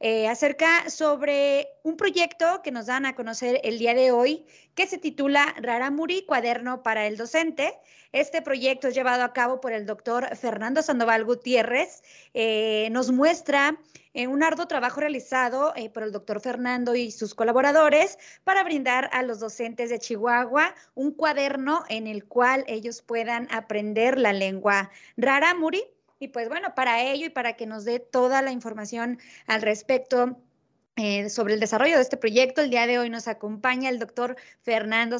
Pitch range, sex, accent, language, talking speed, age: 230-290 Hz, female, Mexican, Spanish, 170 wpm, 30-49